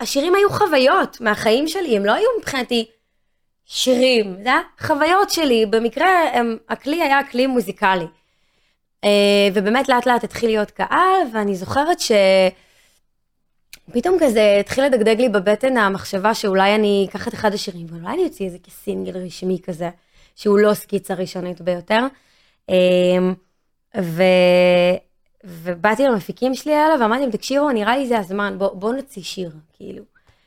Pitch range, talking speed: 185-240 Hz, 135 wpm